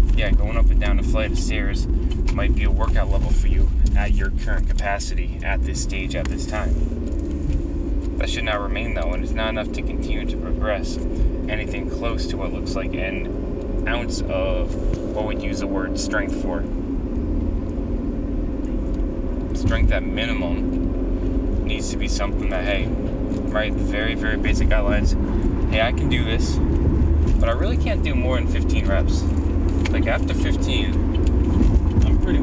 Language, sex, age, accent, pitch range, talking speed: English, male, 20-39, American, 70-85 Hz, 165 wpm